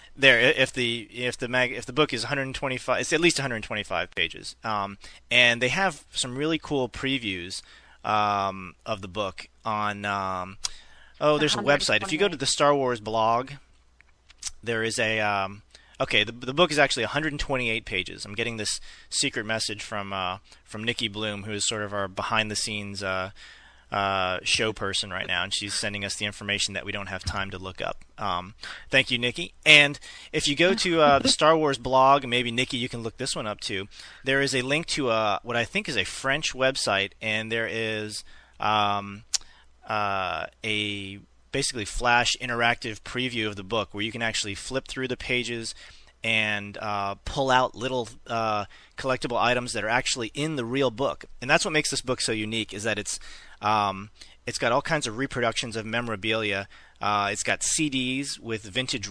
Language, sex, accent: English, male, American